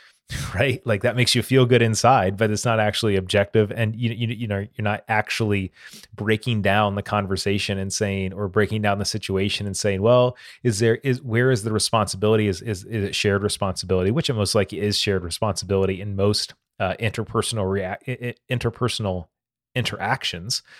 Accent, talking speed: American, 180 wpm